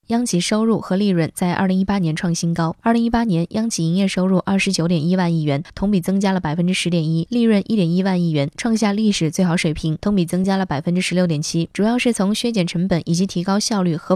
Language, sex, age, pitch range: Chinese, female, 20-39, 170-200 Hz